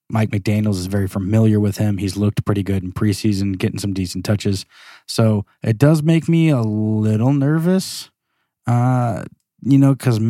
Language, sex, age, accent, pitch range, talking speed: English, male, 20-39, American, 100-120 Hz, 170 wpm